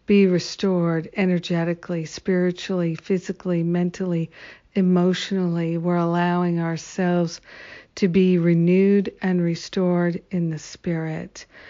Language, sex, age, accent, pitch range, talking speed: English, female, 60-79, American, 170-190 Hz, 90 wpm